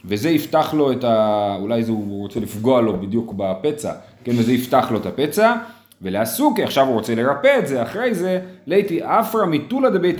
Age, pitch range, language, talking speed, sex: 30-49, 110-155 Hz, Hebrew, 180 wpm, male